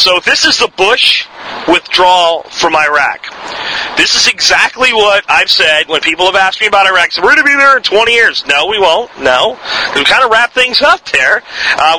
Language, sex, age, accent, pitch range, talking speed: English, male, 40-59, American, 180-255 Hz, 210 wpm